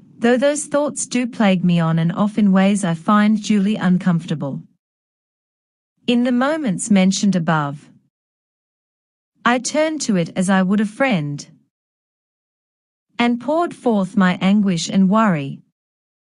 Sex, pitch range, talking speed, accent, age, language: female, 185-235 Hz, 135 wpm, Australian, 40-59, English